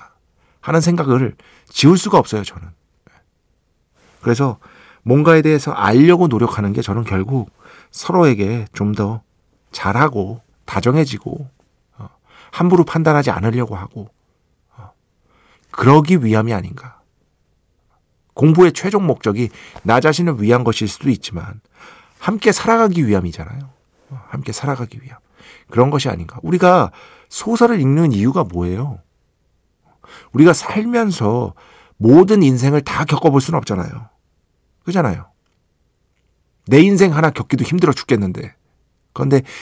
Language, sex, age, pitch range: Korean, male, 50-69, 105-160 Hz